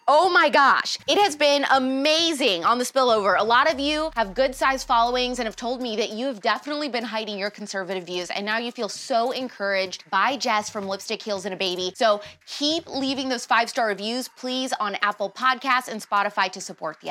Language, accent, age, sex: English, American, 20-39, female